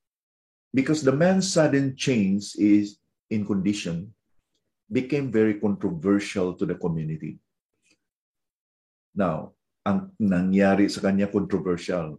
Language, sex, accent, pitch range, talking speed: English, male, Filipino, 90-115 Hz, 100 wpm